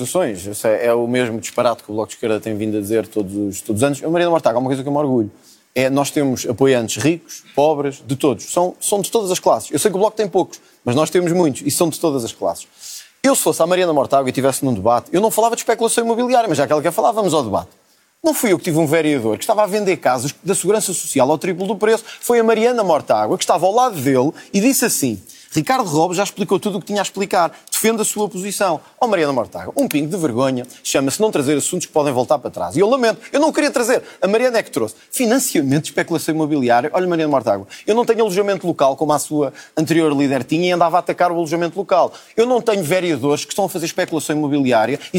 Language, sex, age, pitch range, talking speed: Portuguese, male, 20-39, 140-215 Hz, 255 wpm